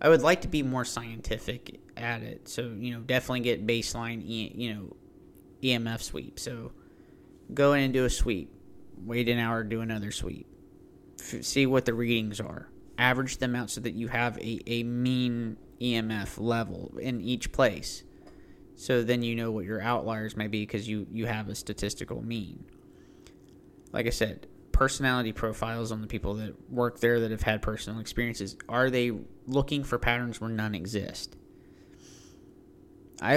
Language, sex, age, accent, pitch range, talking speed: English, male, 30-49, American, 110-120 Hz, 165 wpm